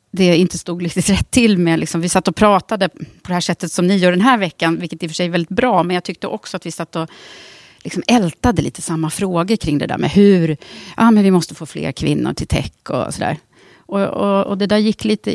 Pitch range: 165-200 Hz